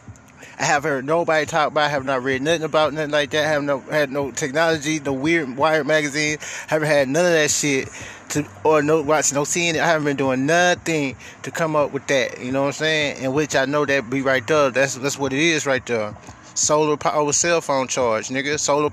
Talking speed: 245 wpm